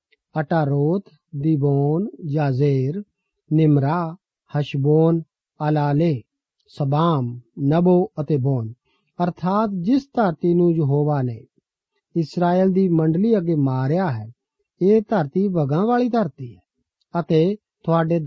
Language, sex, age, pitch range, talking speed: Punjabi, male, 50-69, 150-195 Hz, 65 wpm